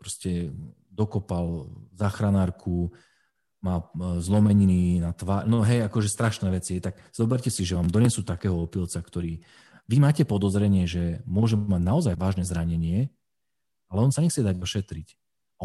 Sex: male